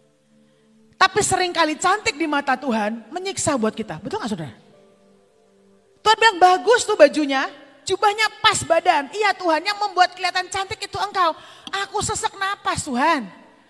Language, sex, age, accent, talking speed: Indonesian, female, 30-49, native, 140 wpm